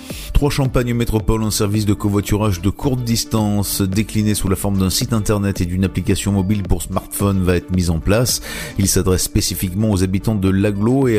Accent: French